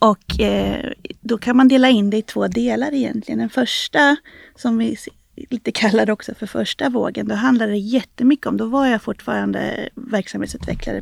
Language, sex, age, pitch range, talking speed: Swedish, female, 30-49, 205-250 Hz, 175 wpm